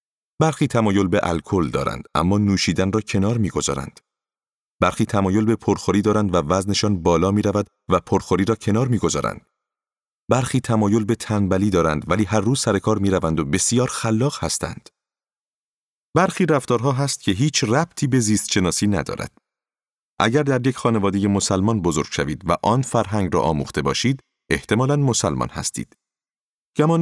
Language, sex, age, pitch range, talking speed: Persian, male, 40-59, 95-120 Hz, 145 wpm